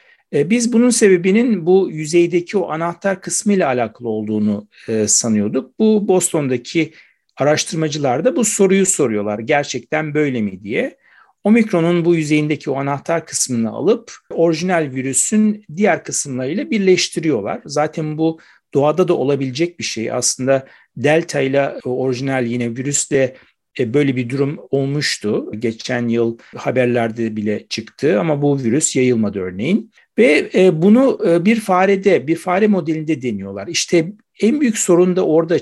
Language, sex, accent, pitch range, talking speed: Turkish, male, native, 130-185 Hz, 130 wpm